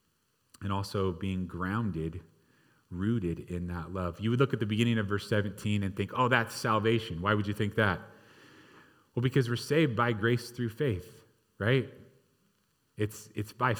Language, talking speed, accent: English, 170 wpm, American